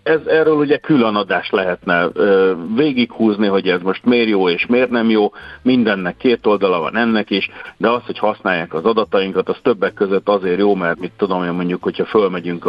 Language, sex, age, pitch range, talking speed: Hungarian, male, 60-79, 95-130 Hz, 200 wpm